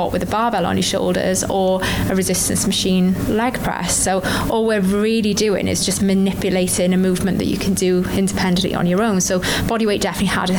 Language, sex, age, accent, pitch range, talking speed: English, female, 20-39, British, 185-215 Hz, 195 wpm